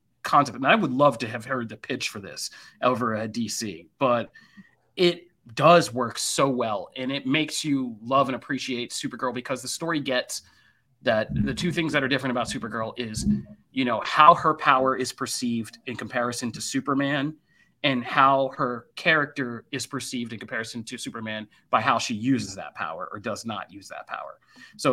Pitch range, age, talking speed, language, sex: 120-145 Hz, 30-49, 185 wpm, English, male